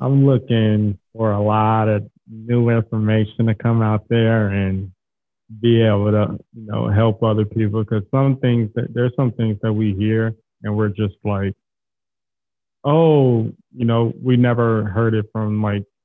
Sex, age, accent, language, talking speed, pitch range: male, 20-39, American, English, 165 wpm, 100-115 Hz